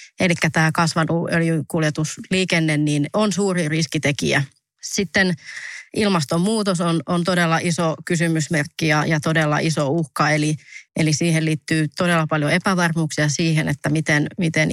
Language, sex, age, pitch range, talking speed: English, female, 30-49, 155-180 Hz, 125 wpm